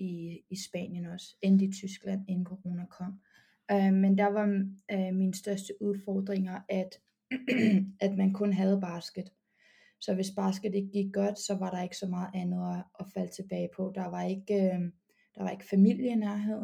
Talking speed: 175 wpm